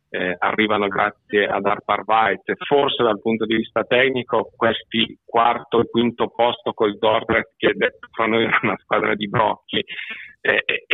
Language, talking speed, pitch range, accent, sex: Italian, 160 wpm, 105-120 Hz, native, male